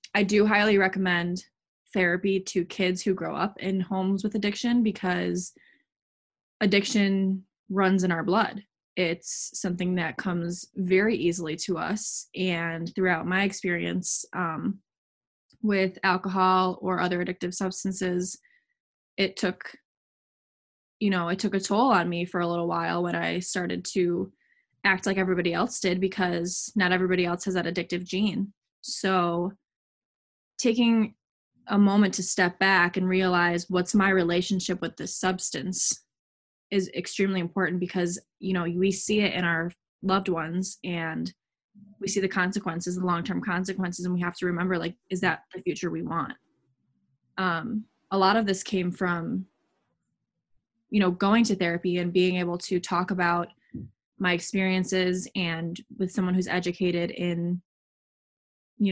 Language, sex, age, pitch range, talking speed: English, female, 20-39, 175-195 Hz, 150 wpm